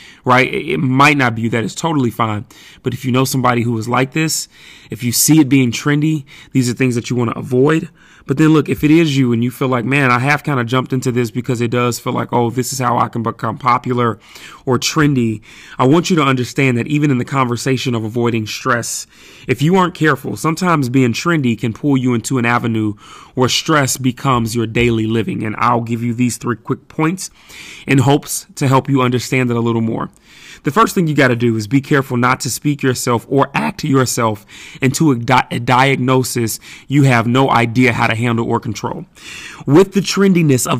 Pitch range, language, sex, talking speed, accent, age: 120-140 Hz, English, male, 220 wpm, American, 30-49